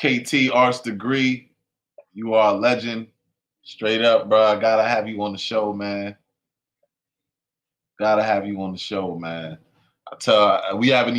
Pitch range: 105-130 Hz